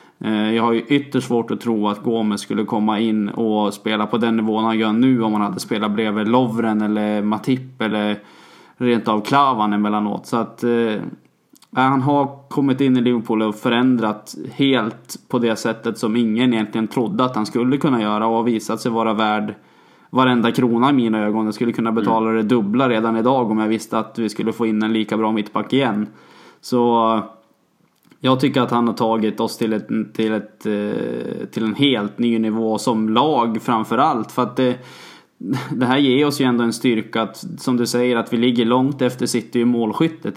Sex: male